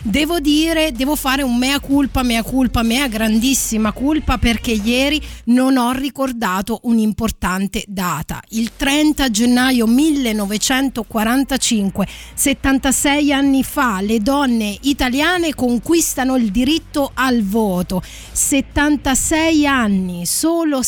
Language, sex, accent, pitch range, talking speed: Italian, female, native, 215-280 Hz, 105 wpm